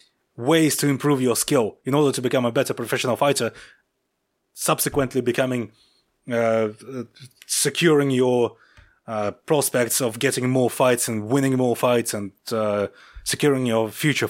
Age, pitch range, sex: 30-49, 115-135 Hz, male